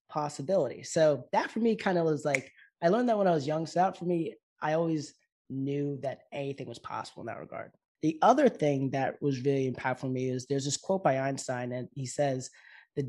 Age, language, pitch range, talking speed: 20-39, English, 130-165 Hz, 225 wpm